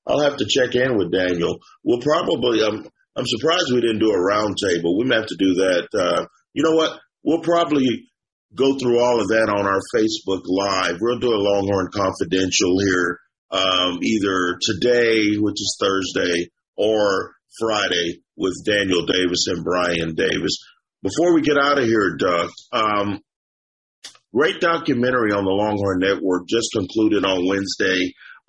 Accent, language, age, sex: American, English, 40-59, male